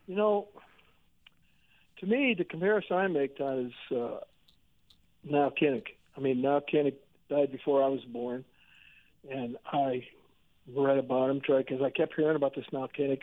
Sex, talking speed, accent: male, 155 wpm, American